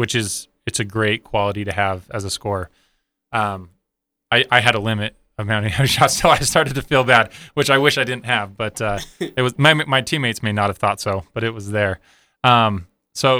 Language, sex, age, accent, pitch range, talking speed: English, male, 20-39, American, 100-115 Hz, 225 wpm